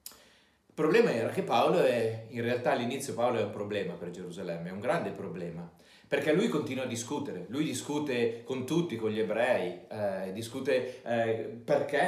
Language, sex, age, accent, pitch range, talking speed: Italian, male, 40-59, native, 115-170 Hz, 175 wpm